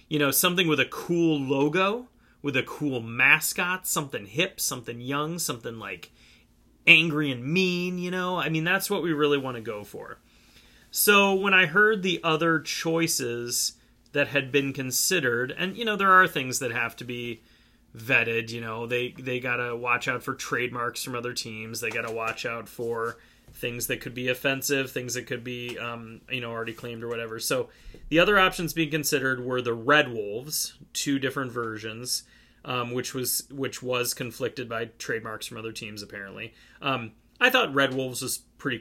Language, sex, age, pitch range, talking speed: English, male, 30-49, 120-150 Hz, 185 wpm